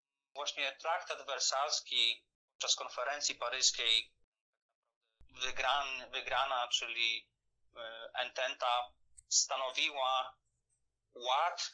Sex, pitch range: male, 125-145 Hz